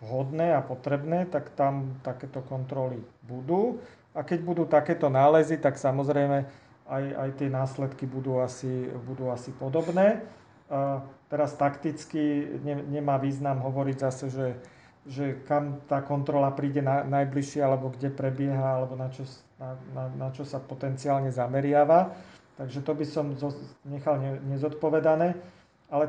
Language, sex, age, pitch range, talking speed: Slovak, male, 40-59, 135-150 Hz, 145 wpm